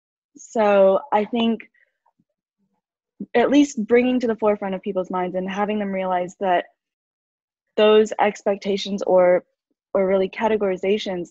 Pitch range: 185-215 Hz